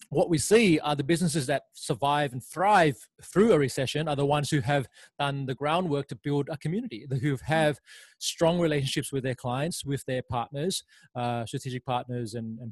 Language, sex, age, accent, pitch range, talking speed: English, male, 20-39, Australian, 125-145 Hz, 190 wpm